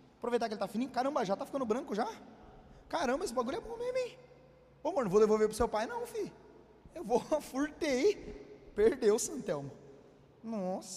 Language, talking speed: Portuguese, 185 wpm